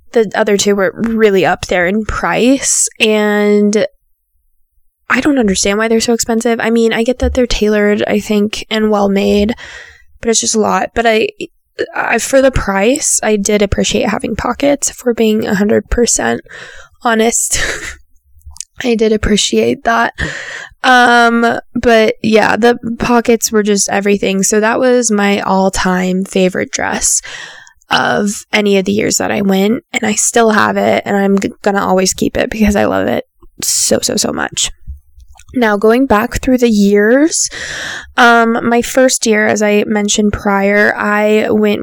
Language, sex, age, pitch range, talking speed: English, female, 10-29, 200-235 Hz, 160 wpm